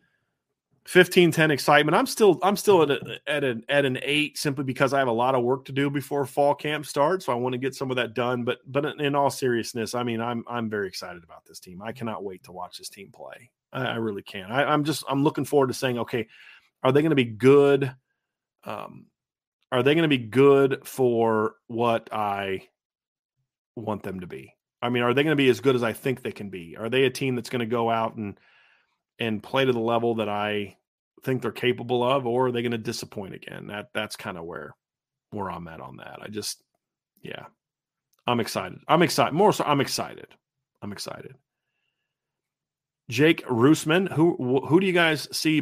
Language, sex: English, male